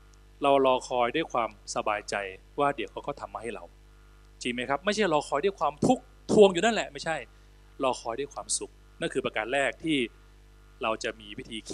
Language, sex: Thai, male